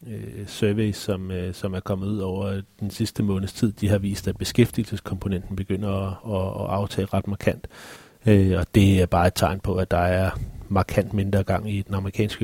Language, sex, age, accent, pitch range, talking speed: Danish, male, 30-49, native, 95-110 Hz, 185 wpm